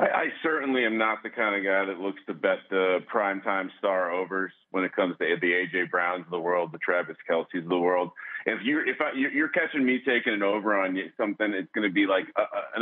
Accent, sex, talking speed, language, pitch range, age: American, male, 235 wpm, English, 100-125 Hz, 40-59